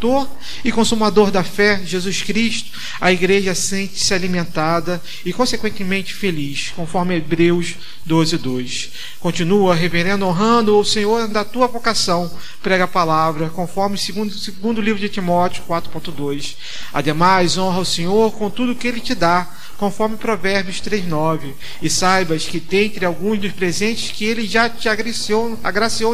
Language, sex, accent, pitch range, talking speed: Portuguese, male, Brazilian, 170-210 Hz, 140 wpm